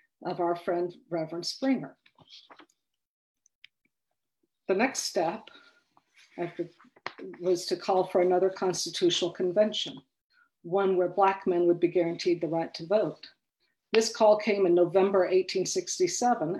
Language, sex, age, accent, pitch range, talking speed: English, female, 50-69, American, 175-220 Hz, 115 wpm